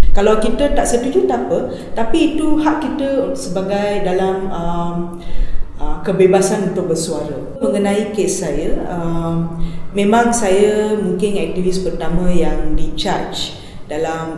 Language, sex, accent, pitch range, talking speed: Indonesian, female, Malaysian, 160-210 Hz, 120 wpm